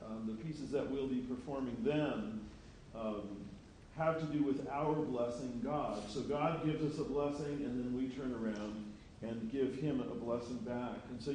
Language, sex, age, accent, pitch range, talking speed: English, male, 40-59, American, 105-140 Hz, 185 wpm